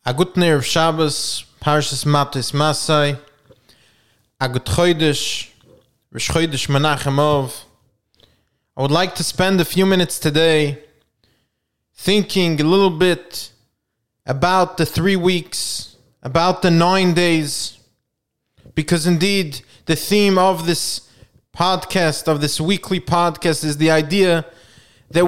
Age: 20-39